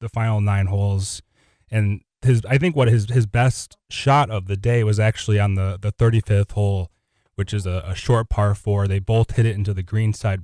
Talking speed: 220 wpm